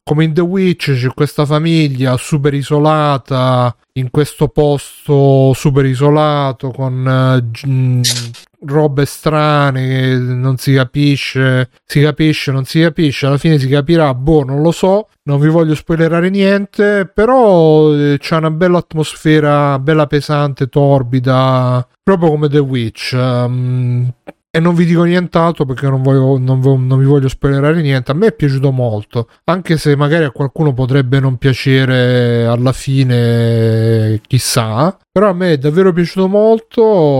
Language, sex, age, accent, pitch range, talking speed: Italian, male, 30-49, native, 130-155 Hz, 140 wpm